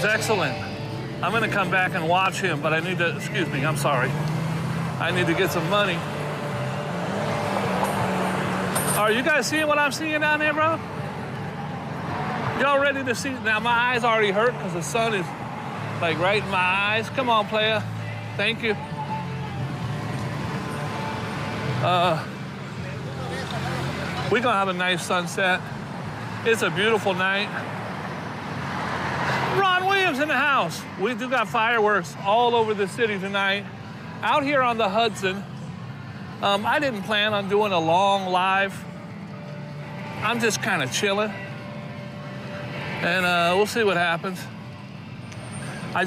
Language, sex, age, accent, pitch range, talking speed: English, male, 40-59, American, 165-215 Hz, 140 wpm